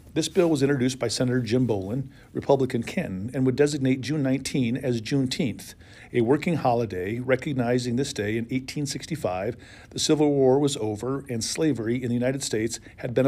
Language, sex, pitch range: English, male, 115-135 Hz